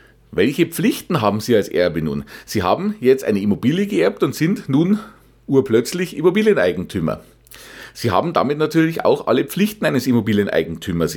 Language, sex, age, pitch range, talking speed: German, male, 40-59, 120-175 Hz, 145 wpm